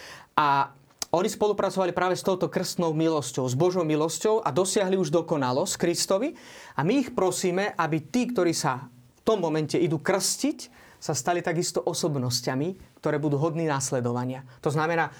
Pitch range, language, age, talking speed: 140-175 Hz, Slovak, 30-49, 155 wpm